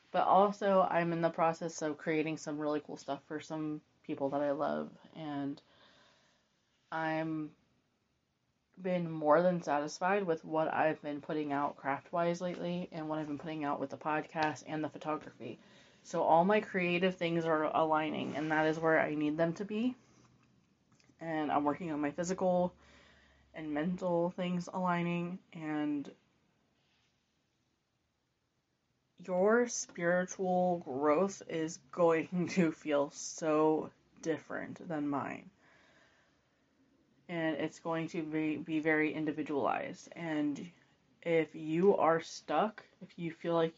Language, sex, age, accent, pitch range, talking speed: English, female, 30-49, American, 150-175 Hz, 135 wpm